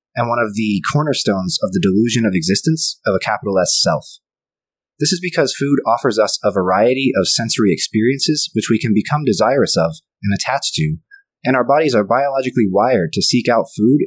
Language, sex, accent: English, male, American